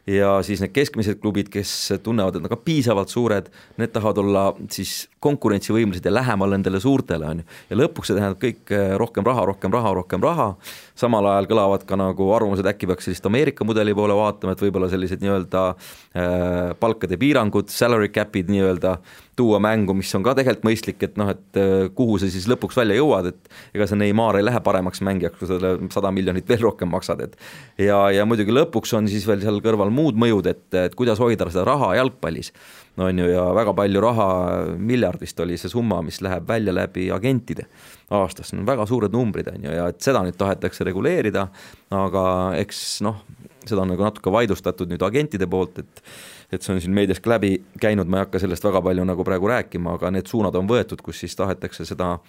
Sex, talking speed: male, 185 wpm